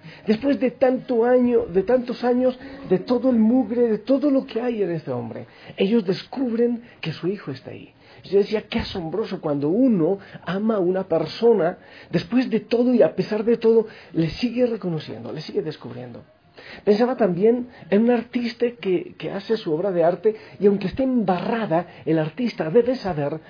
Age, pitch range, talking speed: 50-69, 155-230 Hz, 180 wpm